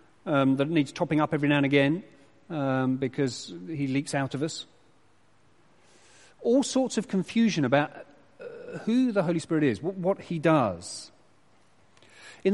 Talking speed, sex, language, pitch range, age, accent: 155 wpm, male, English, 135-190 Hz, 40-59, British